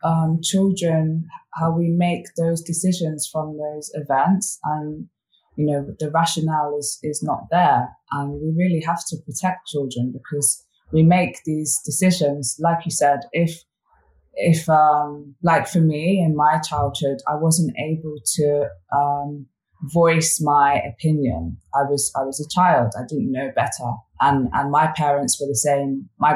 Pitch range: 140-170 Hz